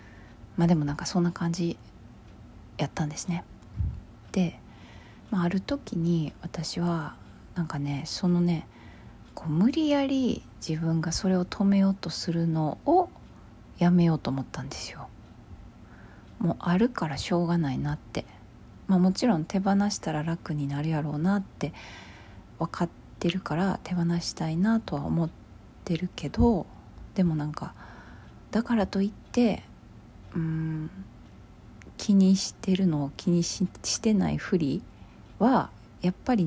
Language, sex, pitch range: Japanese, female, 145-190 Hz